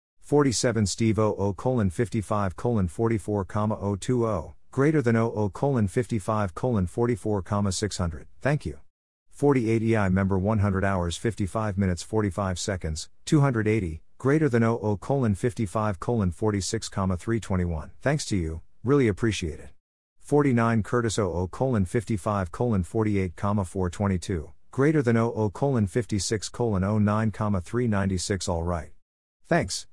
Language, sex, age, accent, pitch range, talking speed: English, male, 50-69, American, 90-115 Hz, 90 wpm